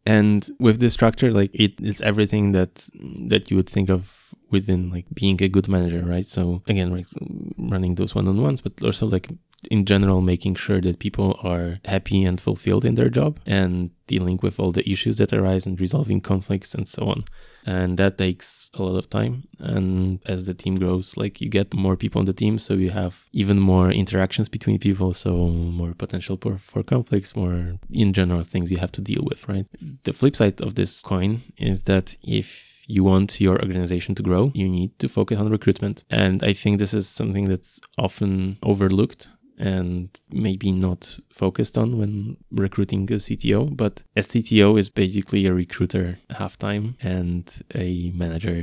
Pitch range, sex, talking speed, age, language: 90-105 Hz, male, 185 wpm, 20-39, English